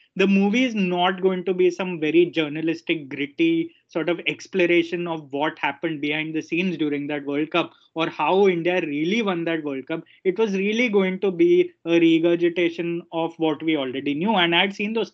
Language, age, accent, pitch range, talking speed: English, 20-39, Indian, 155-190 Hz, 195 wpm